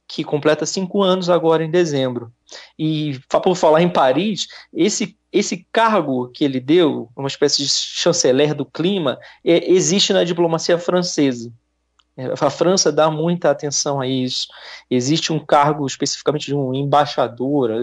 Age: 20-39